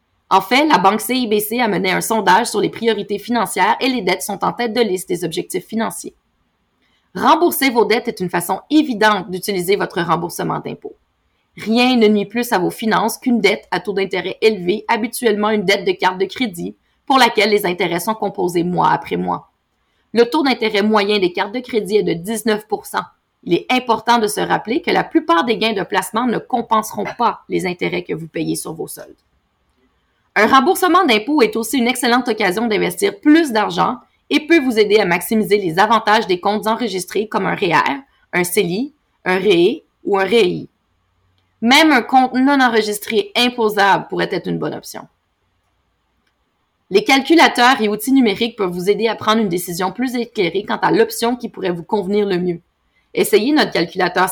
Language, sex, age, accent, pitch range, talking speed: French, female, 30-49, Canadian, 195-245 Hz, 185 wpm